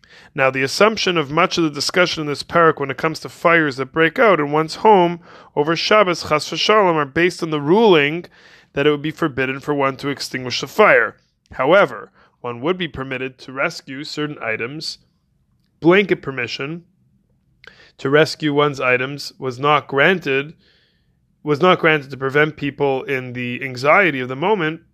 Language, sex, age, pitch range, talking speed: English, male, 20-39, 135-175 Hz, 175 wpm